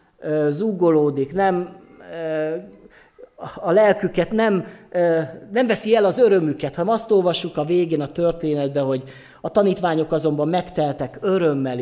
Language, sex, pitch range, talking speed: Hungarian, male, 150-190 Hz, 115 wpm